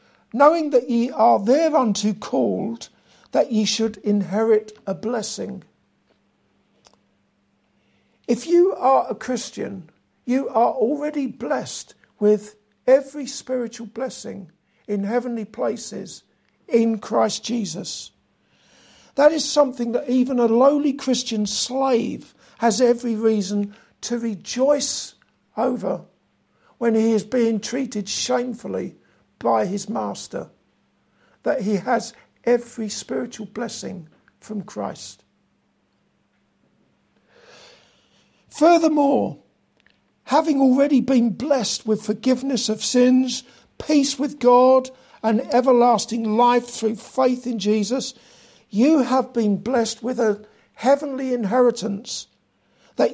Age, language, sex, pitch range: 60-79, English, male, 215-260 Hz